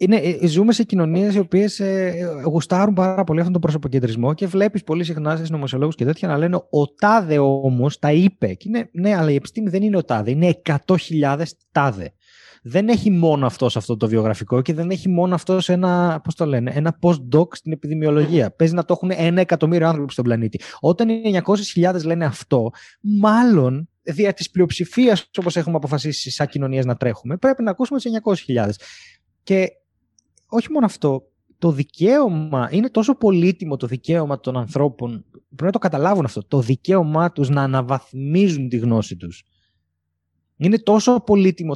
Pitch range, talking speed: 135-195 Hz, 165 wpm